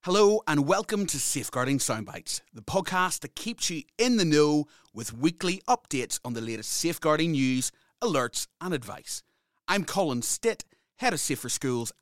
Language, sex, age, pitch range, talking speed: English, male, 30-49, 115-190 Hz, 160 wpm